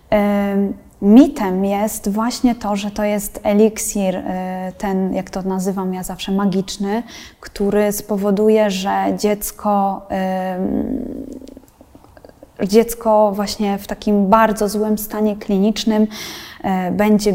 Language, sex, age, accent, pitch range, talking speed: Polish, female, 20-39, native, 200-235 Hz, 95 wpm